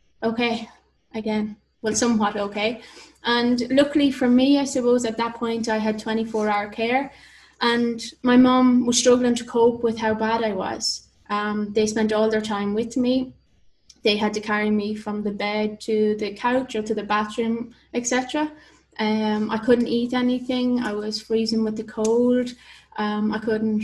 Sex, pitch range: female, 215-245 Hz